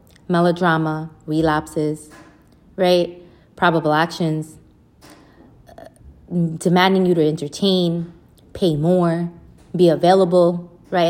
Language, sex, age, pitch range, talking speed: English, female, 20-39, 170-205 Hz, 80 wpm